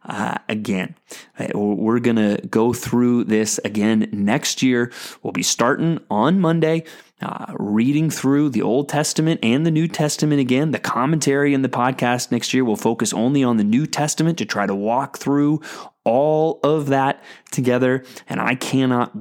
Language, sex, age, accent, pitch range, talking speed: English, male, 30-49, American, 120-155 Hz, 165 wpm